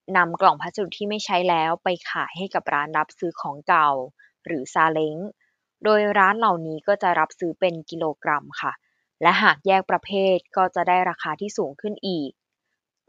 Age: 20-39